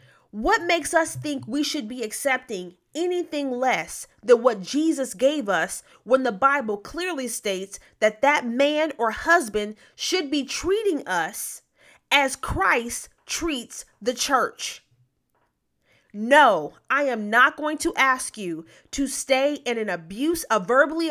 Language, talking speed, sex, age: English, 140 wpm, female, 30-49